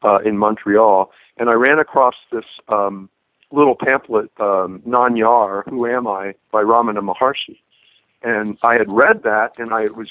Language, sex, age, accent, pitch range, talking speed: English, male, 50-69, American, 105-125 Hz, 160 wpm